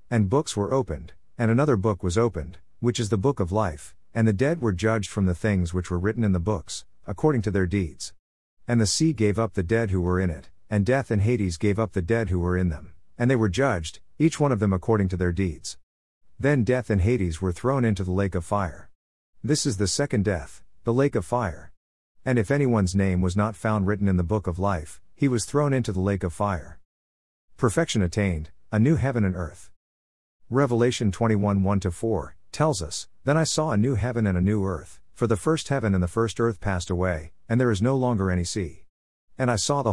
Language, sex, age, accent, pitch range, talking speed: English, male, 50-69, American, 90-115 Hz, 230 wpm